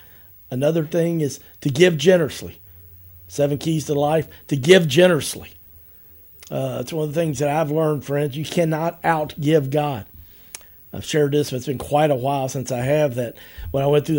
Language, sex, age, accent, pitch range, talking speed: English, male, 50-69, American, 115-150 Hz, 185 wpm